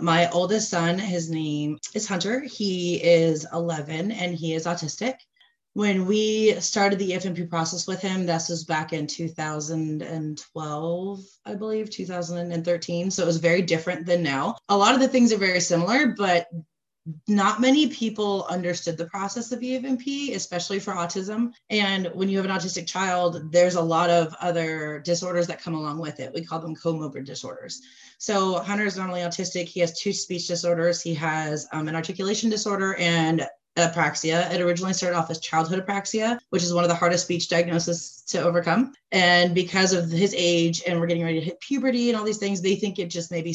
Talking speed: 190 wpm